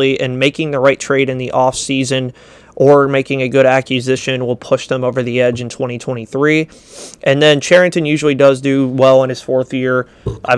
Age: 30-49